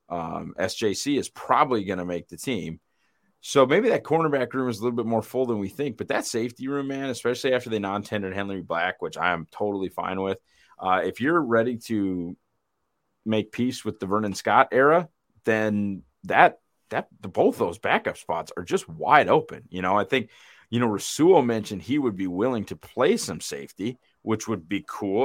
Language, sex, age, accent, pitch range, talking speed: English, male, 30-49, American, 90-115 Hz, 200 wpm